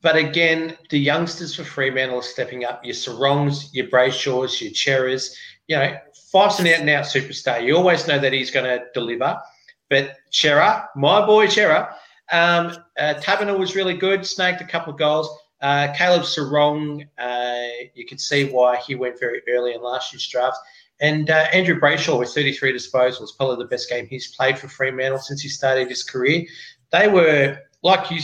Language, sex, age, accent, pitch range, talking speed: English, male, 30-49, Australian, 125-155 Hz, 185 wpm